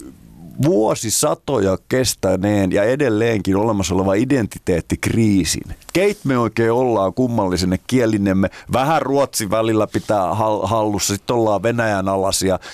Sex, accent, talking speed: male, native, 110 wpm